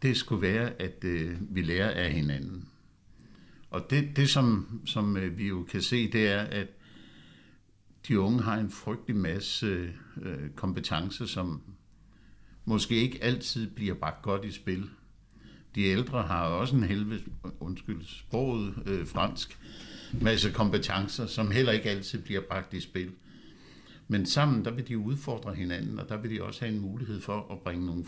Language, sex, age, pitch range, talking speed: Danish, male, 60-79, 90-110 Hz, 160 wpm